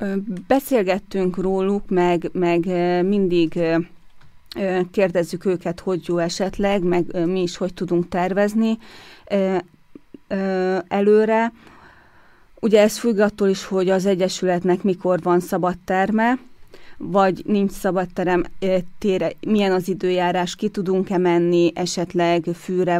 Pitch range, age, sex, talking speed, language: 175-195 Hz, 30-49, female, 105 wpm, Hungarian